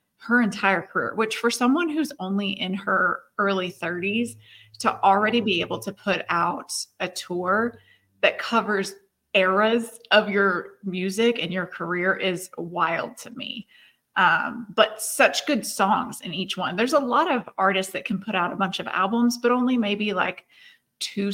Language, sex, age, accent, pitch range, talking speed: English, female, 30-49, American, 185-225 Hz, 170 wpm